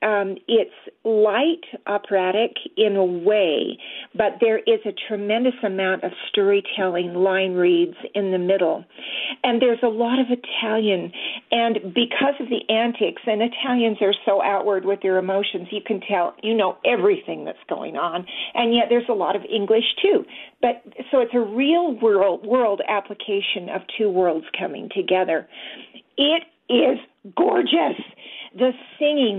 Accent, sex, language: American, female, English